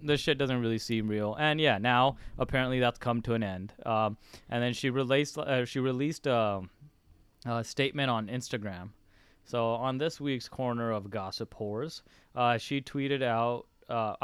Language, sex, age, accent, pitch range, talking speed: English, male, 20-39, American, 115-130 Hz, 175 wpm